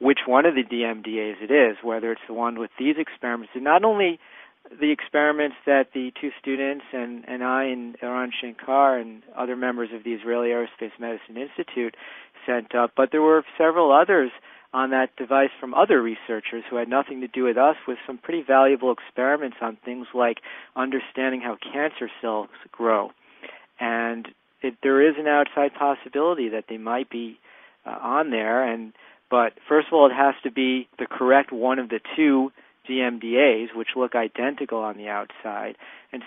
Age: 40-59